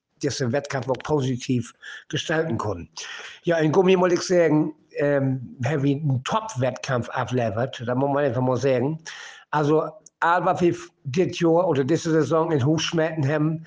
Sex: male